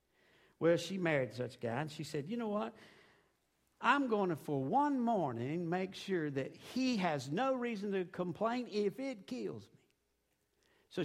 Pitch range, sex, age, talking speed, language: 185-240 Hz, male, 60-79, 175 wpm, English